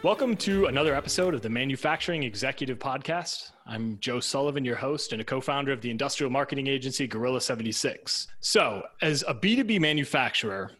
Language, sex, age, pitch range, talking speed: English, male, 20-39, 115-145 Hz, 155 wpm